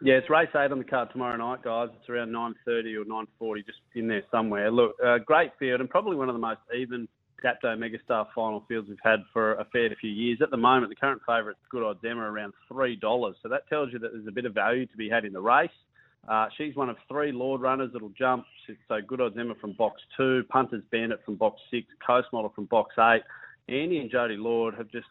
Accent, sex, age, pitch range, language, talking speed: Australian, male, 30-49, 110-130 Hz, English, 240 wpm